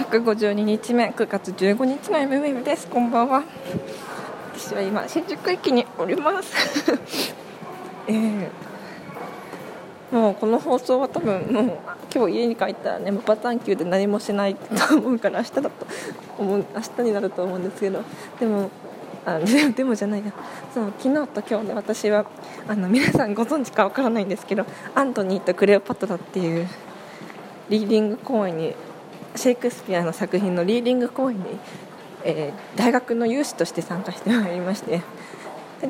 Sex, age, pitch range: female, 20-39, 185-245 Hz